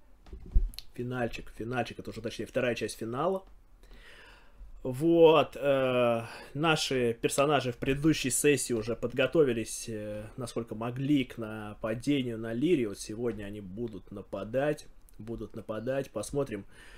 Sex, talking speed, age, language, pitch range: male, 105 wpm, 20-39, Russian, 115-145 Hz